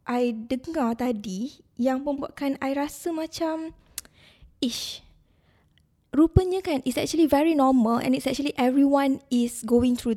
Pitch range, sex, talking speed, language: 230-285 Hz, female, 130 wpm, Malay